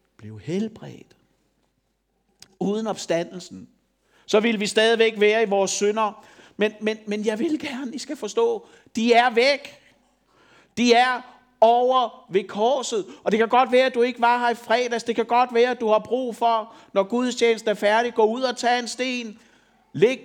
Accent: native